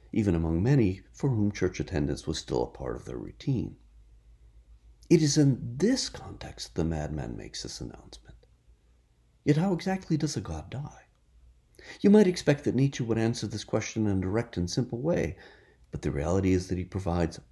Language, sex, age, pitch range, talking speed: English, male, 50-69, 75-120 Hz, 185 wpm